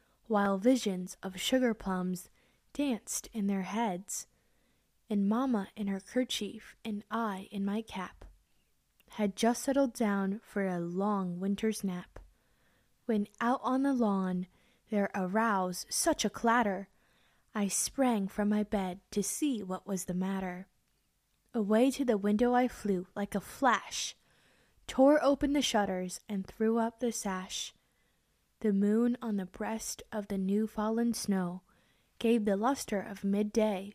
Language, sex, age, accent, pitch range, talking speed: English, female, 10-29, American, 195-235 Hz, 145 wpm